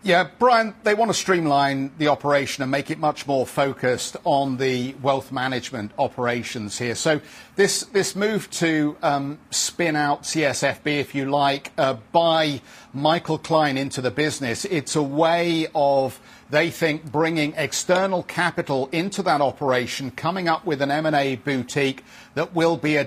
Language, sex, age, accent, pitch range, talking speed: English, male, 50-69, British, 135-160 Hz, 160 wpm